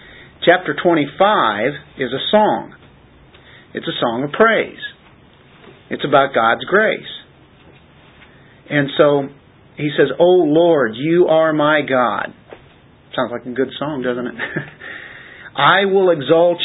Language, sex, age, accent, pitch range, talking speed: English, male, 50-69, American, 130-160 Hz, 125 wpm